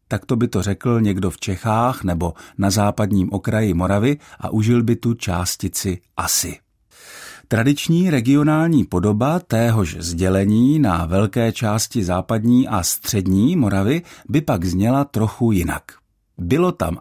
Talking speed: 135 wpm